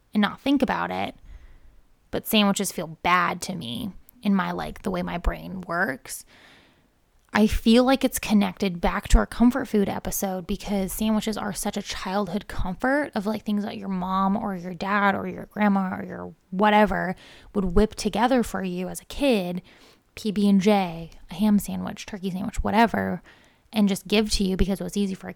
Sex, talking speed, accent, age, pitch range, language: female, 190 wpm, American, 20-39, 185-215 Hz, English